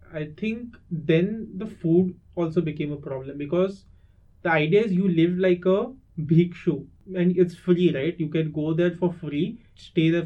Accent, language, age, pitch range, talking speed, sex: Indian, English, 30-49, 155-185 Hz, 175 wpm, male